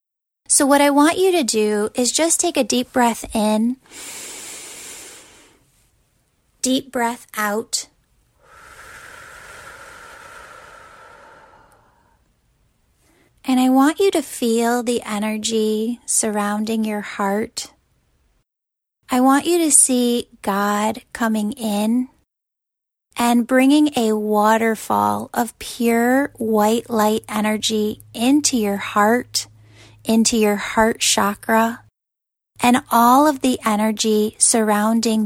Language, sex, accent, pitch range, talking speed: English, female, American, 215-255 Hz, 100 wpm